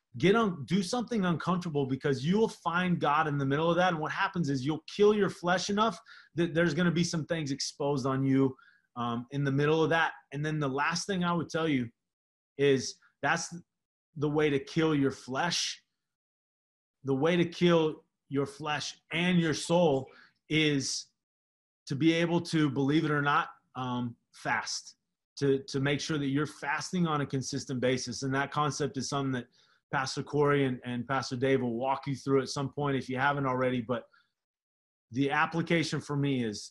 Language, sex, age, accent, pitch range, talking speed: English, male, 30-49, American, 130-160 Hz, 190 wpm